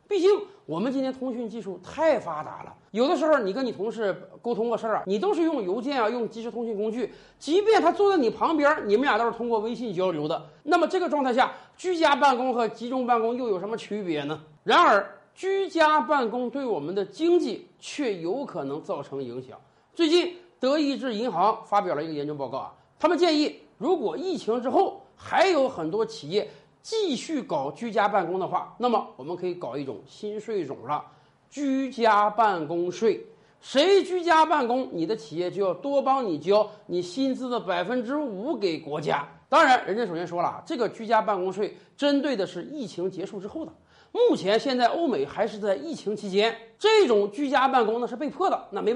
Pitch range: 205-310 Hz